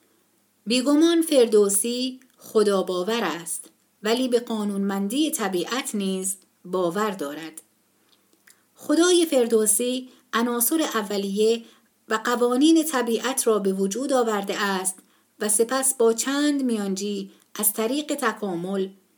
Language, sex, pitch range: Persian, female, 190-250 Hz